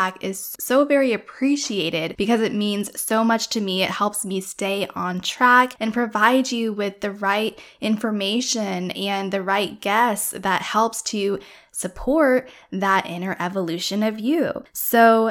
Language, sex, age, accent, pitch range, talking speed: English, female, 10-29, American, 195-250 Hz, 150 wpm